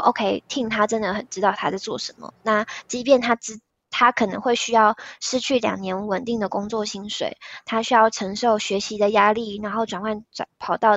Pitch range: 205-240 Hz